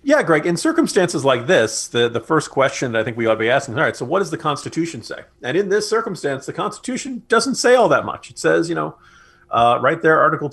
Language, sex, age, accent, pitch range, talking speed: English, male, 40-59, American, 120-175 Hz, 255 wpm